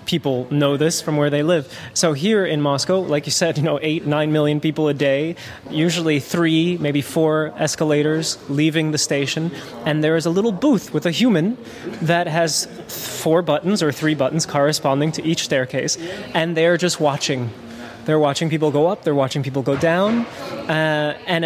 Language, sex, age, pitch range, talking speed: English, male, 20-39, 145-170 Hz, 185 wpm